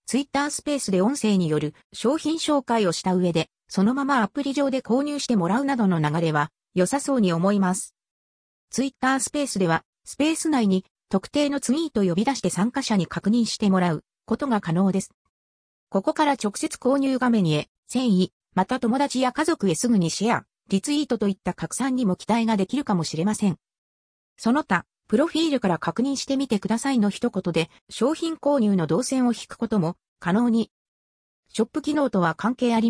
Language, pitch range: Japanese, 185-270 Hz